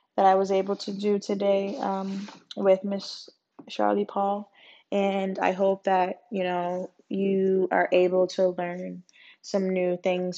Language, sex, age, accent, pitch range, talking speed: English, female, 10-29, American, 170-190 Hz, 150 wpm